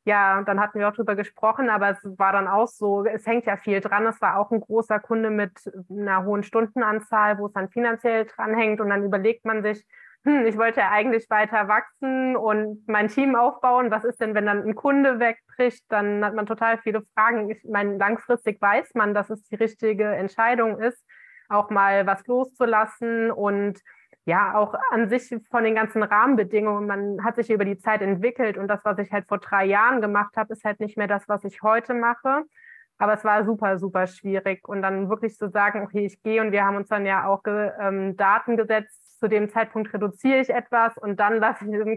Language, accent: German, German